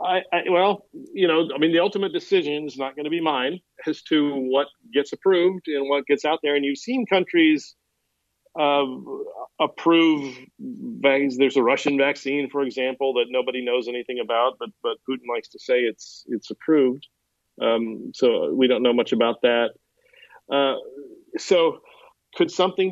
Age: 40-59